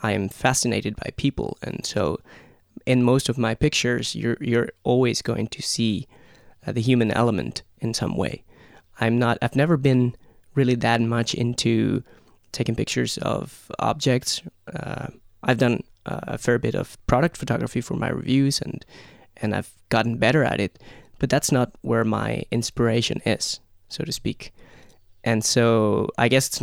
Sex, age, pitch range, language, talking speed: male, 20-39, 110-130 Hz, English, 160 wpm